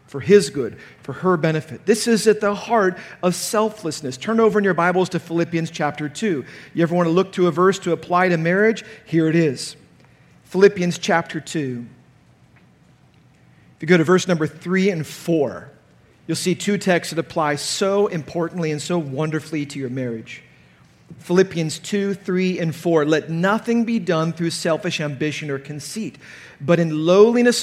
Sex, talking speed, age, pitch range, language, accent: male, 175 wpm, 40-59, 160-200 Hz, English, American